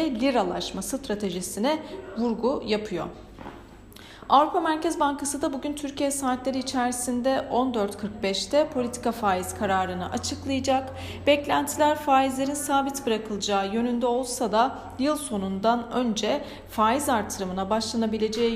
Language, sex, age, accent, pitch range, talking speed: Turkish, female, 40-59, native, 200-265 Hz, 95 wpm